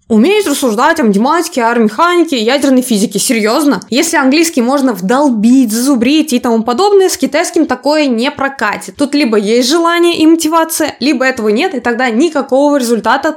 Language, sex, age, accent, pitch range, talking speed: Russian, female, 20-39, native, 235-300 Hz, 155 wpm